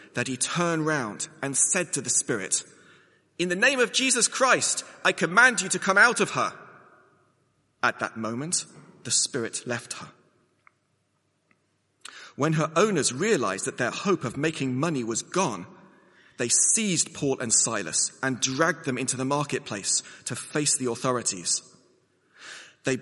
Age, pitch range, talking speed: 30-49, 130-190 Hz, 150 wpm